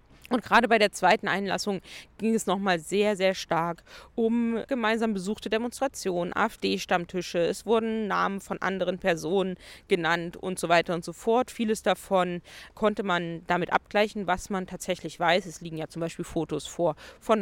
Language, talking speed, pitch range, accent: German, 165 wpm, 175-215 Hz, German